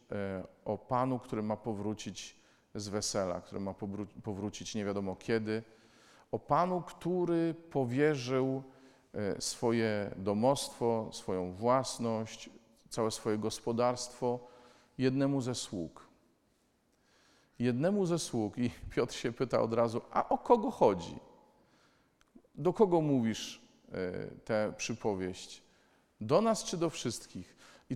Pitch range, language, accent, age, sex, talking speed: 110-135 Hz, Polish, native, 40-59, male, 110 wpm